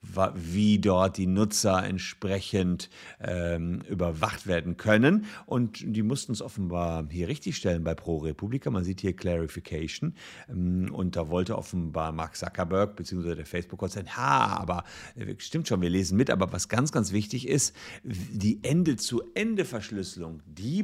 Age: 50-69